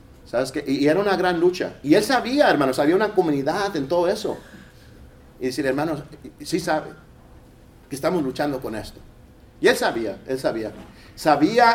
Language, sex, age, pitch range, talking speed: English, male, 50-69, 150-235 Hz, 175 wpm